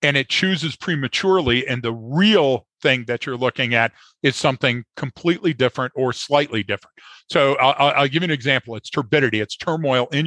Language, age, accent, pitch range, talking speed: English, 50-69, American, 120-145 Hz, 185 wpm